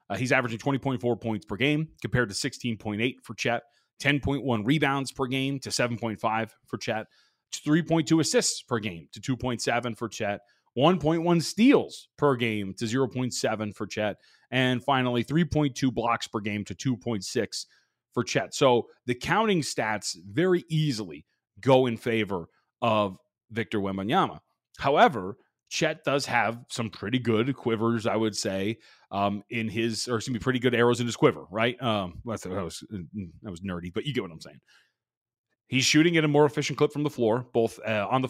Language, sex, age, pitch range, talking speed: English, male, 30-49, 110-135 Hz, 170 wpm